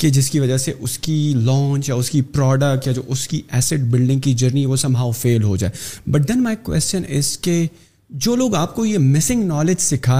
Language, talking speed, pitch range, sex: Urdu, 235 wpm, 125-155 Hz, male